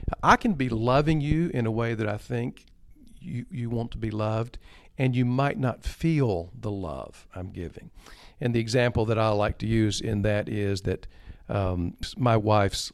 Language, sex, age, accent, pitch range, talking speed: English, male, 50-69, American, 105-140 Hz, 190 wpm